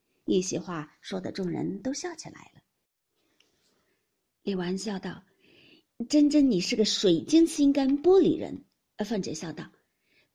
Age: 50-69